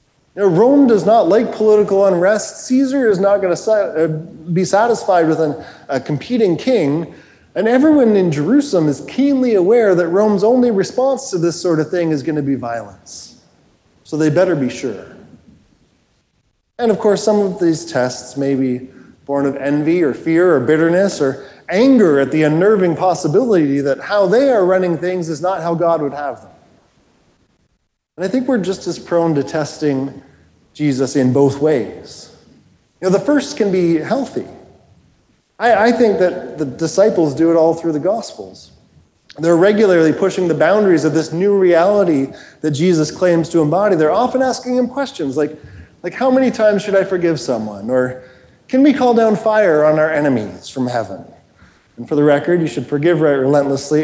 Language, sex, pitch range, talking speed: English, male, 145-205 Hz, 175 wpm